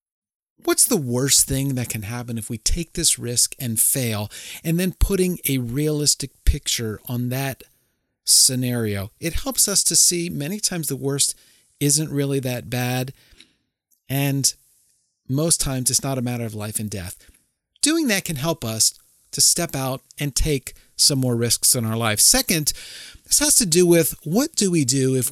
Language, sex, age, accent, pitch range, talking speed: English, male, 40-59, American, 115-170 Hz, 175 wpm